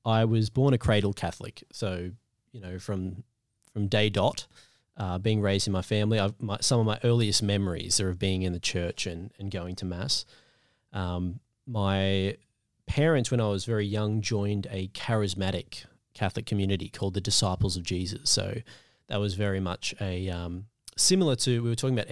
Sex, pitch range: male, 95-115 Hz